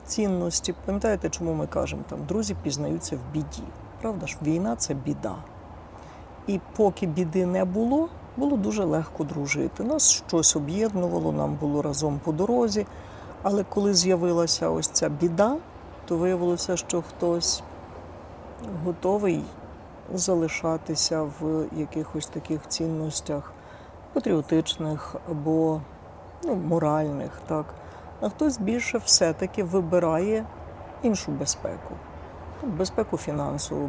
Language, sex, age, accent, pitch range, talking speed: Ukrainian, female, 50-69, native, 145-190 Hz, 110 wpm